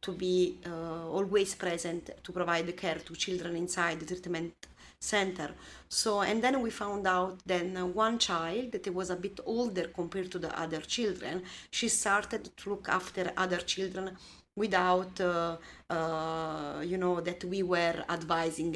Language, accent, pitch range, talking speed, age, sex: English, Italian, 170-200 Hz, 165 wpm, 30-49, female